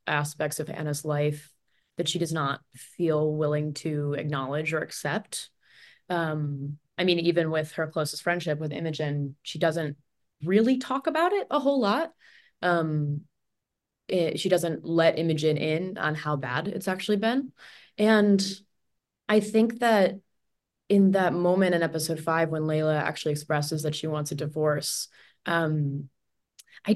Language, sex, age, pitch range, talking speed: English, female, 20-39, 155-210 Hz, 145 wpm